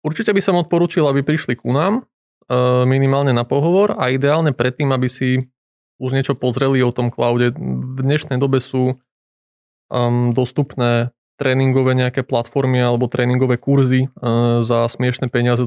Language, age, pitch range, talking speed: Slovak, 20-39, 120-140 Hz, 140 wpm